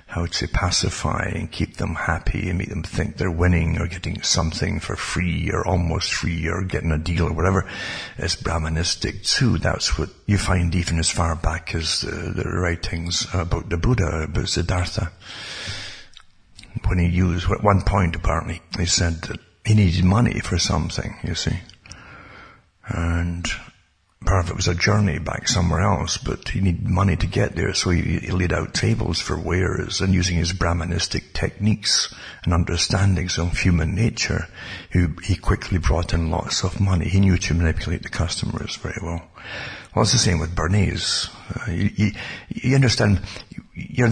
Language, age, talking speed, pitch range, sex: English, 60-79, 175 wpm, 85-100 Hz, male